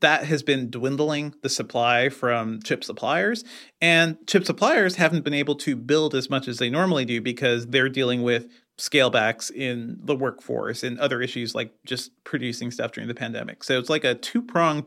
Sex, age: male, 30-49